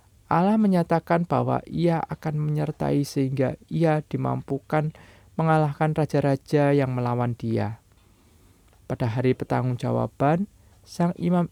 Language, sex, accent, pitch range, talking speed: Indonesian, male, native, 110-155 Hz, 100 wpm